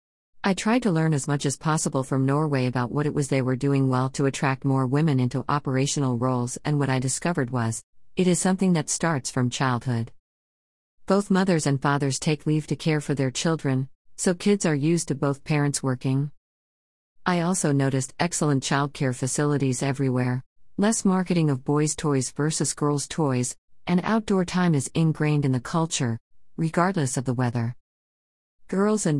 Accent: American